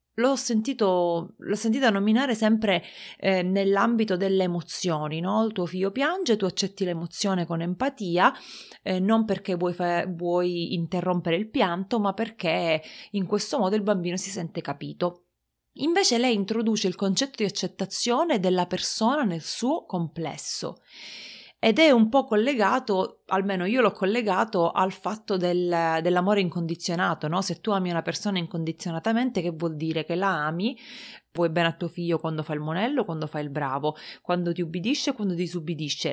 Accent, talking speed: native, 160 wpm